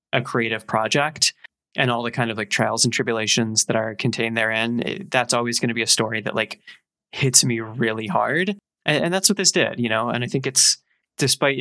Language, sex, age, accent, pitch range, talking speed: English, male, 20-39, American, 115-145 Hz, 215 wpm